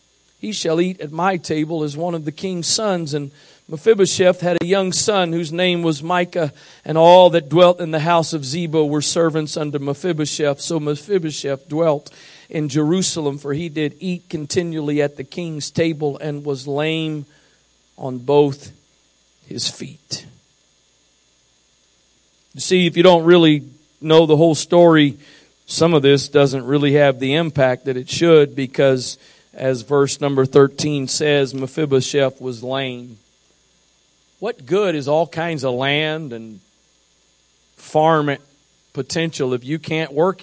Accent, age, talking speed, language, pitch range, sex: American, 50-69, 150 wpm, English, 130-165 Hz, male